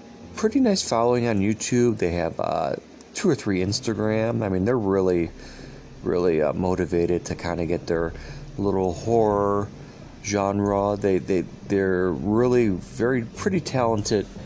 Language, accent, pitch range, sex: English, American, 90-115 Hz, male